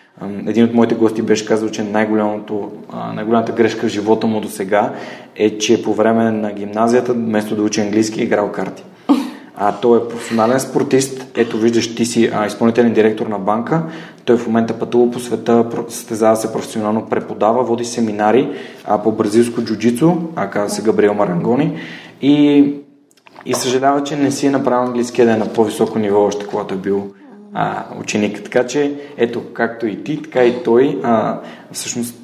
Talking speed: 165 wpm